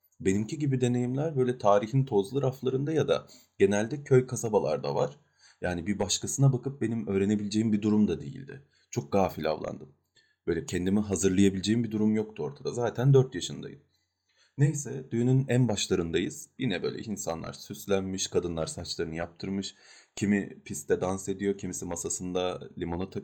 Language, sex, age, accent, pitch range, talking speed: Turkish, male, 30-49, native, 95-130 Hz, 140 wpm